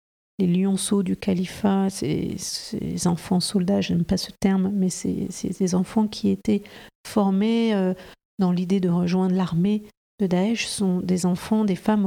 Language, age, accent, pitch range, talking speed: French, 50-69, French, 180-205 Hz, 165 wpm